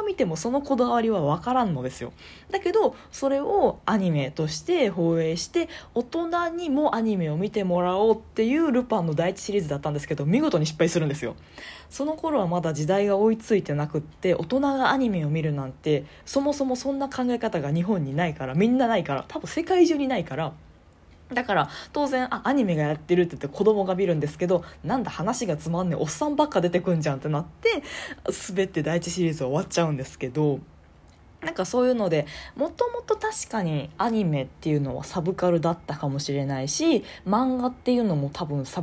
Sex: female